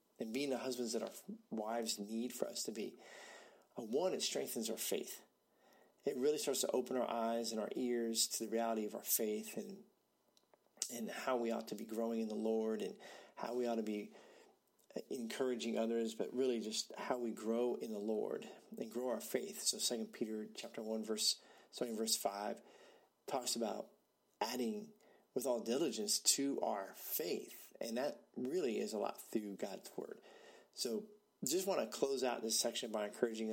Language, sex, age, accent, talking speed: English, male, 40-59, American, 185 wpm